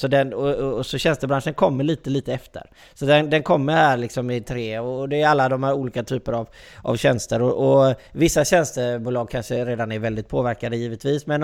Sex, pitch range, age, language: male, 120-145 Hz, 20-39, Swedish